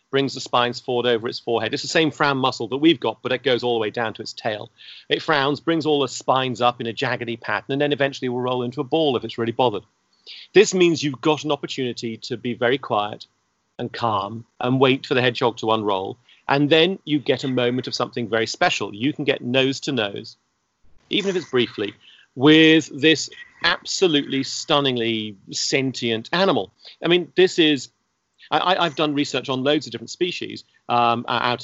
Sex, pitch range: male, 120-150 Hz